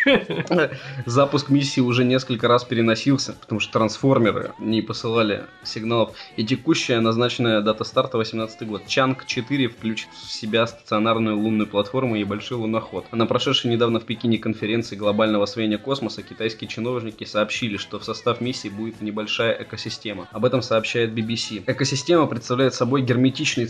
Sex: male